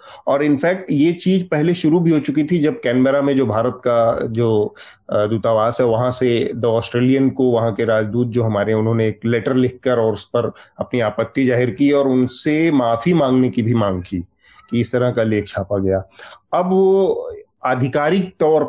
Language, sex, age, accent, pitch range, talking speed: Hindi, male, 30-49, native, 115-155 Hz, 190 wpm